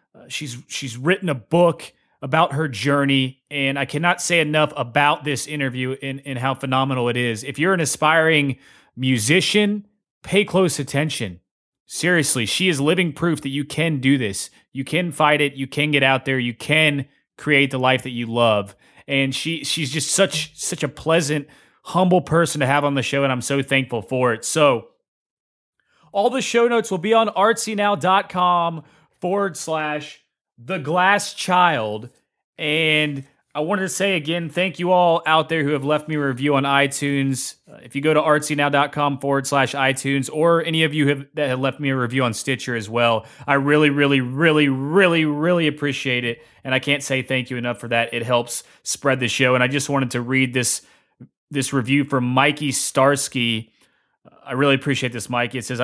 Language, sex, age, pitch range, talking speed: English, male, 30-49, 130-160 Hz, 190 wpm